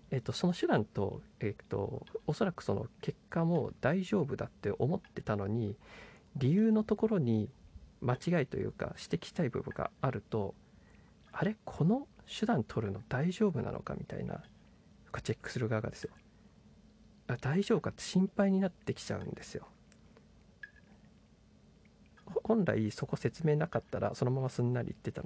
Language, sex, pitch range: Japanese, male, 110-160 Hz